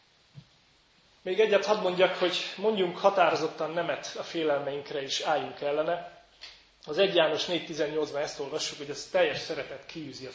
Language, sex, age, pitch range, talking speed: Hungarian, male, 30-49, 150-195 Hz, 145 wpm